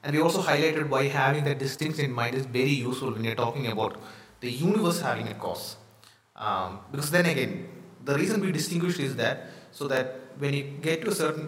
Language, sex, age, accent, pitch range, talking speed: English, male, 20-39, Indian, 125-155 Hz, 210 wpm